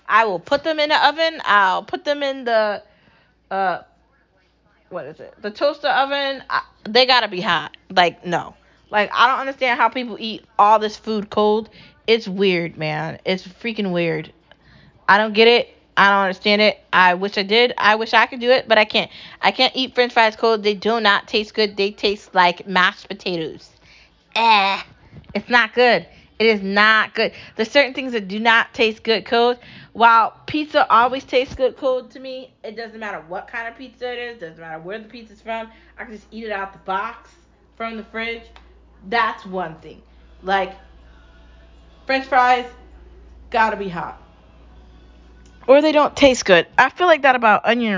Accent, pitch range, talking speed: American, 195-245 Hz, 190 wpm